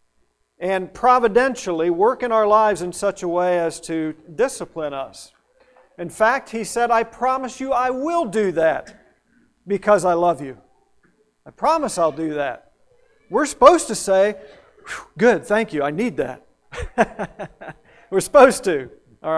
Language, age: English, 50-69